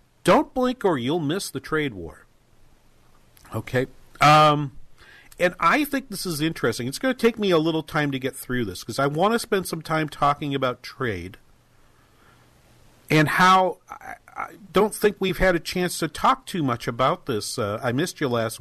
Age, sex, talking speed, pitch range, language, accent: 50-69, male, 190 wpm, 115-160 Hz, English, American